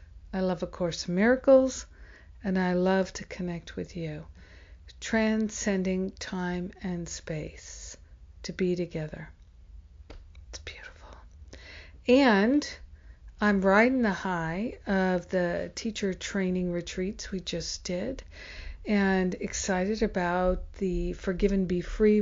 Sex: female